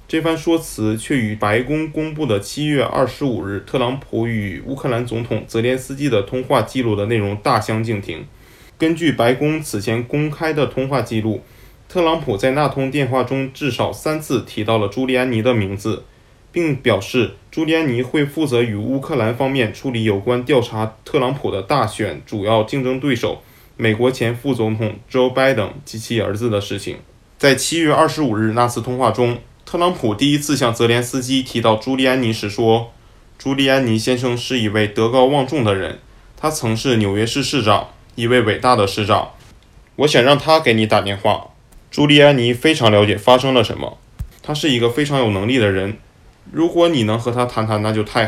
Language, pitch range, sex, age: Chinese, 110-135 Hz, male, 20-39